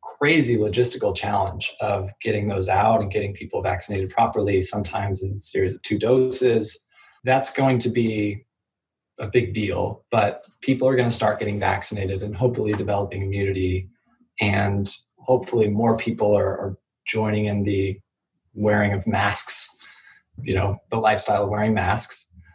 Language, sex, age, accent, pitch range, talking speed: English, male, 20-39, American, 100-120 Hz, 150 wpm